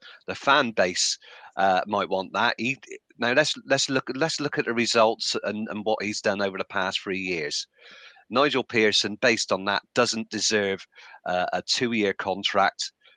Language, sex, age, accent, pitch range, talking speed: English, male, 40-59, British, 100-120 Hz, 175 wpm